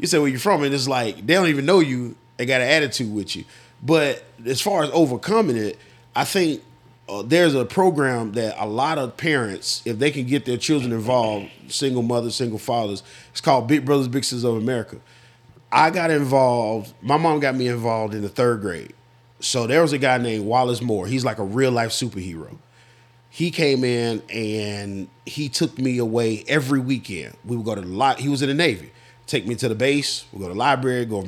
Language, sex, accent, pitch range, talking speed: English, male, American, 115-145 Hz, 220 wpm